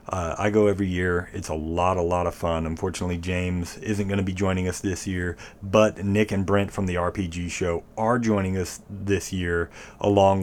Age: 30-49